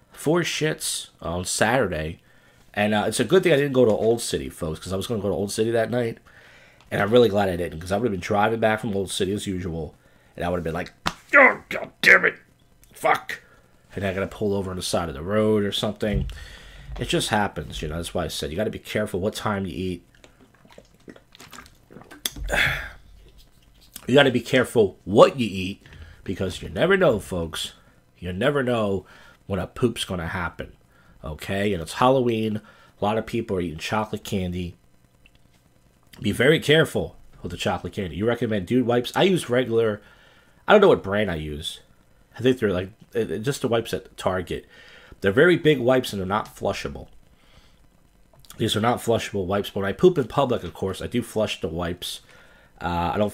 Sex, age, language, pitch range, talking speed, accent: male, 40-59, English, 85-115 Hz, 200 wpm, American